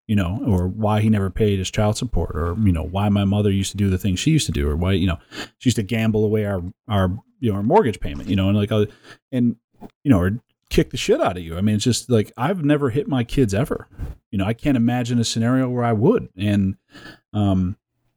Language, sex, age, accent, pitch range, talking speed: English, male, 30-49, American, 100-135 Hz, 260 wpm